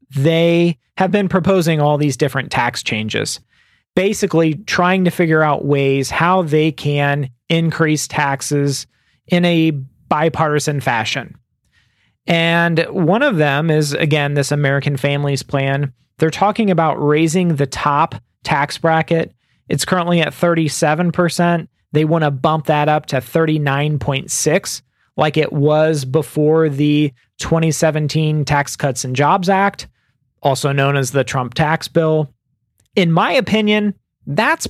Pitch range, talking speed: 140-165 Hz, 130 wpm